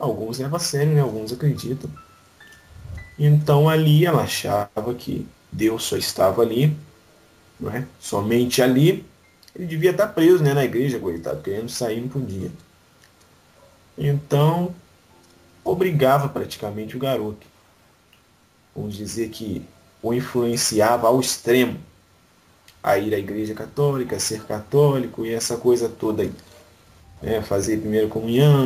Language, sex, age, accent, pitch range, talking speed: English, male, 20-39, Brazilian, 110-145 Hz, 125 wpm